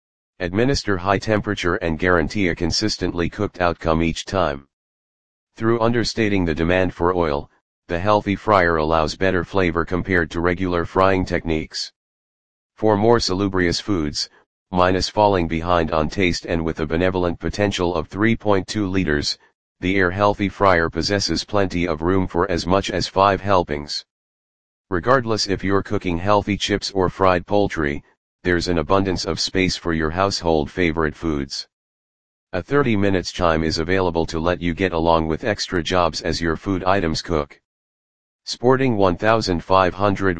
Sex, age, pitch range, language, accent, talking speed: male, 40-59, 85-100 Hz, English, American, 145 wpm